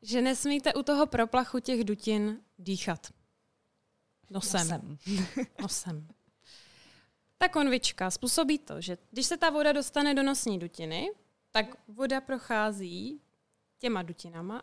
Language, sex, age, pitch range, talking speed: Czech, female, 20-39, 210-255 Hz, 115 wpm